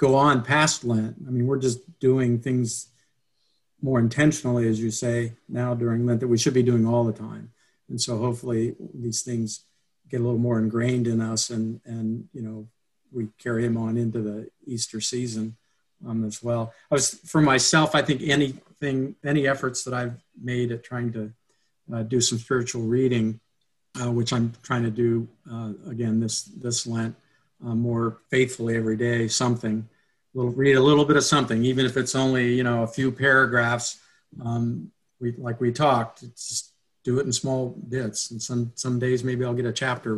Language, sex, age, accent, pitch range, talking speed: English, male, 50-69, American, 115-130 Hz, 190 wpm